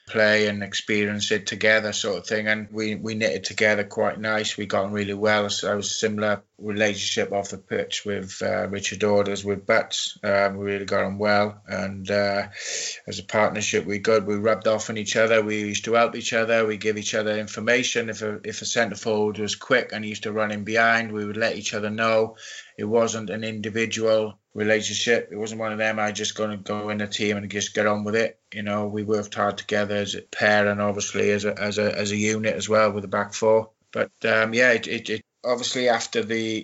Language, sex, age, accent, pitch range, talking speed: English, male, 20-39, British, 100-110 Hz, 235 wpm